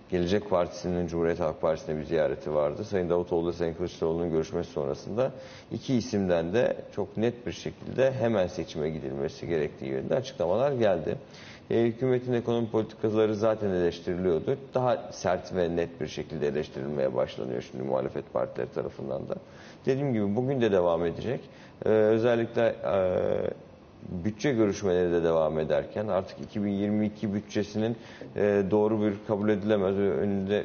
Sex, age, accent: male, 50-69, native